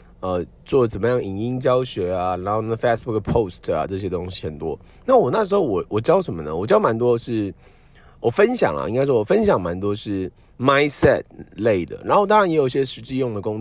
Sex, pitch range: male, 95-130 Hz